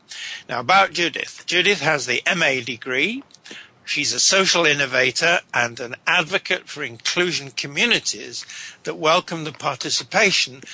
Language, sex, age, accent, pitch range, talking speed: English, male, 60-79, British, 130-175 Hz, 125 wpm